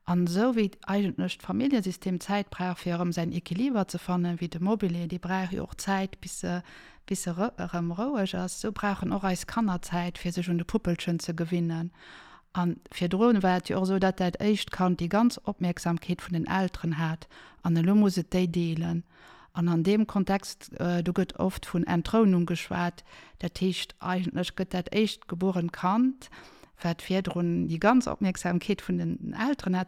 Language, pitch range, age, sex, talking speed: French, 175-195 Hz, 50-69, female, 185 wpm